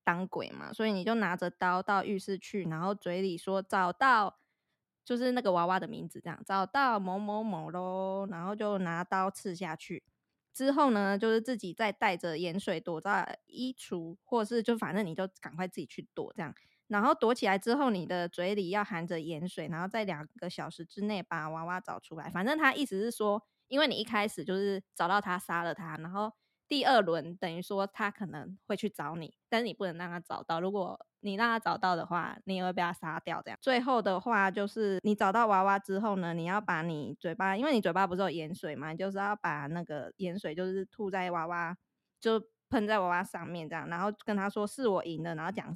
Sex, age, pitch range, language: female, 20-39, 175-210 Hz, Chinese